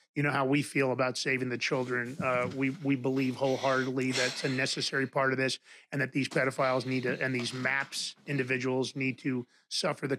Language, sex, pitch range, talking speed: English, male, 135-180 Hz, 200 wpm